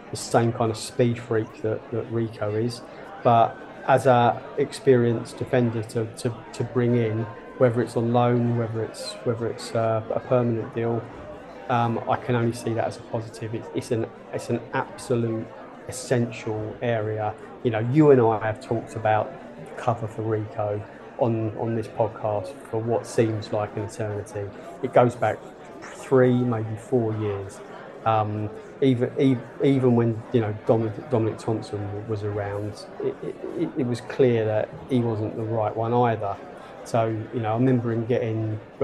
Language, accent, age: English, British, 30-49